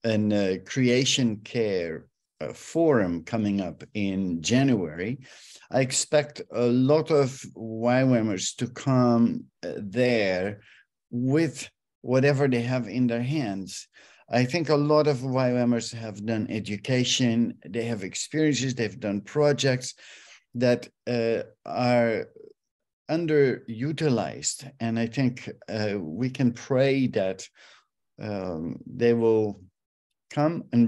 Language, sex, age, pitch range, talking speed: English, male, 50-69, 115-135 Hz, 115 wpm